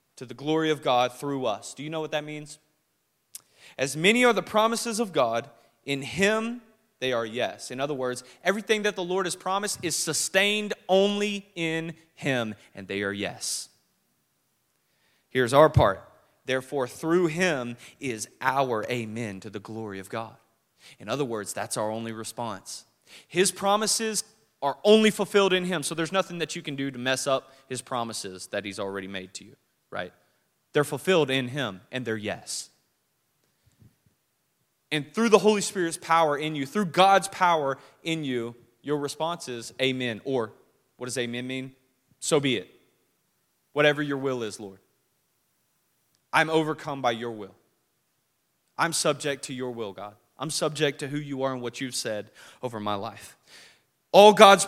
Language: English